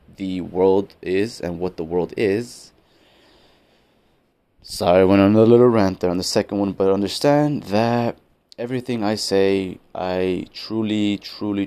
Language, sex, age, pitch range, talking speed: English, male, 30-49, 90-105 Hz, 150 wpm